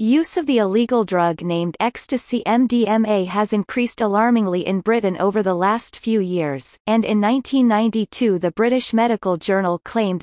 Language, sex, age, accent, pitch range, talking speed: English, female, 30-49, American, 190-235 Hz, 155 wpm